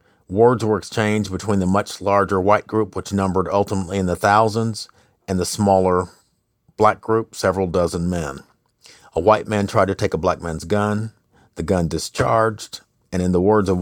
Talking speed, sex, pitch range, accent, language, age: 180 wpm, male, 95-110 Hz, American, English, 50-69